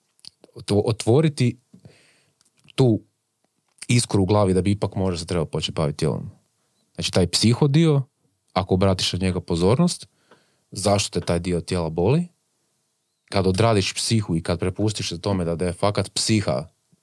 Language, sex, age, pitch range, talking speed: Croatian, male, 30-49, 90-115 Hz, 145 wpm